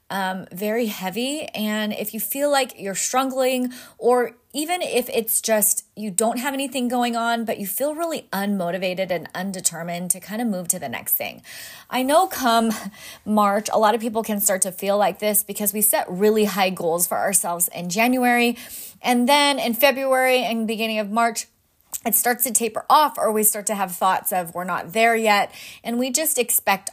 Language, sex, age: English, female, 30-49